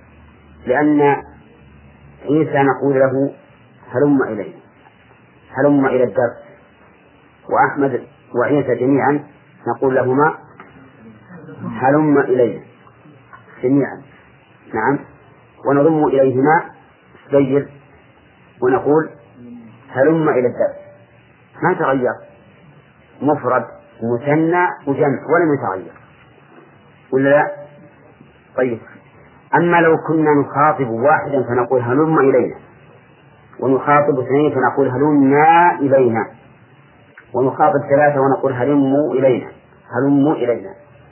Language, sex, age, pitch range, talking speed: English, male, 50-69, 130-150 Hz, 80 wpm